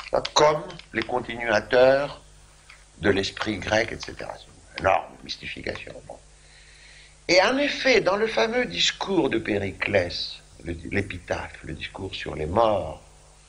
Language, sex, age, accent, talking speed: French, male, 60-79, French, 115 wpm